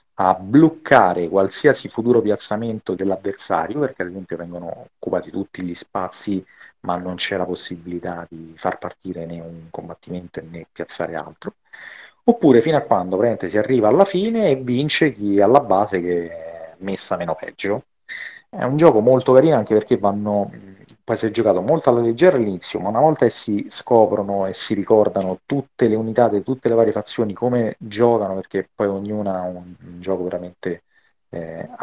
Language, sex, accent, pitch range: Italian, male, native, 95-120 Hz